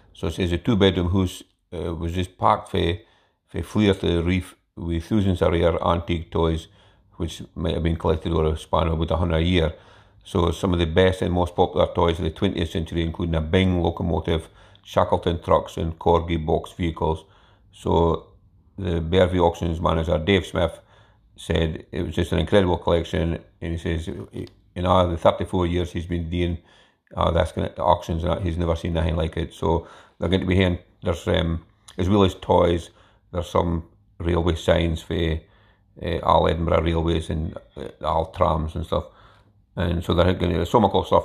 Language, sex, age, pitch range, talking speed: English, male, 50-69, 85-95 Hz, 190 wpm